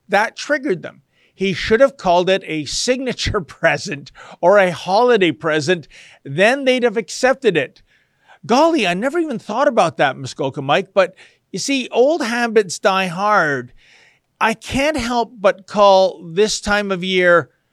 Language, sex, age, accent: English, male, 50-69, American